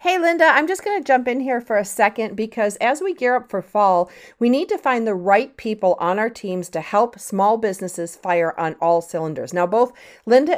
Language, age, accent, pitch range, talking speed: English, 40-59, American, 180-240 Hz, 220 wpm